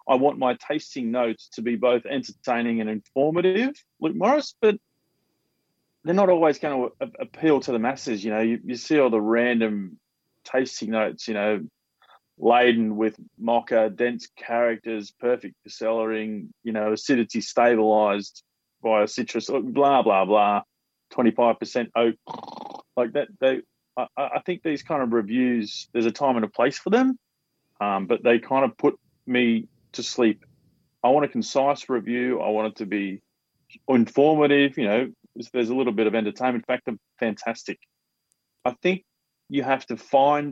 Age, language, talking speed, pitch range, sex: 20-39, English, 165 wpm, 105-130 Hz, male